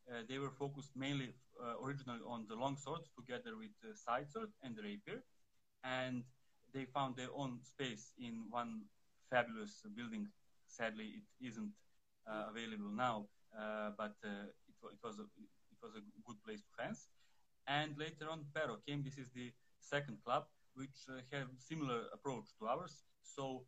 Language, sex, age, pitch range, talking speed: English, male, 30-49, 120-145 Hz, 175 wpm